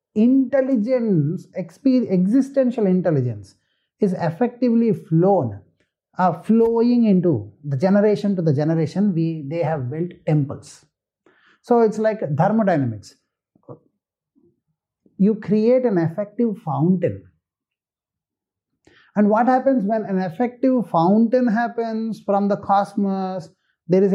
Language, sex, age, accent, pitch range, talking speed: English, male, 30-49, Indian, 160-215 Hz, 100 wpm